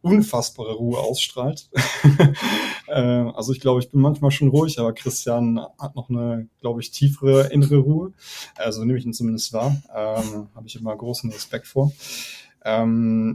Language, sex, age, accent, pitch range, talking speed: German, male, 20-39, German, 110-135 Hz, 155 wpm